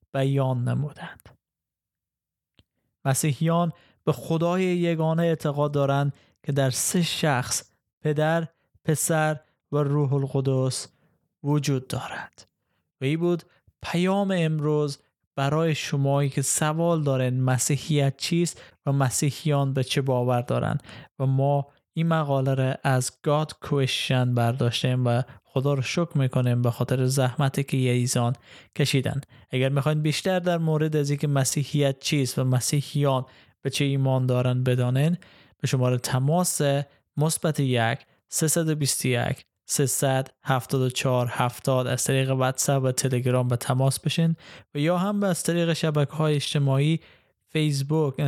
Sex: male